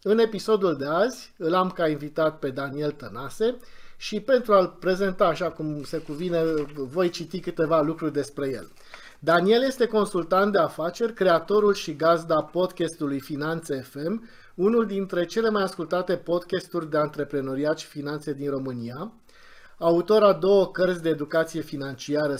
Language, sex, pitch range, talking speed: Romanian, male, 145-185 Hz, 145 wpm